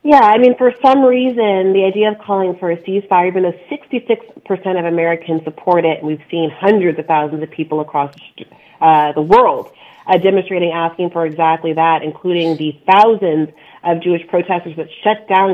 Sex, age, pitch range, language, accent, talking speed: female, 30-49, 165-210 Hz, English, American, 175 wpm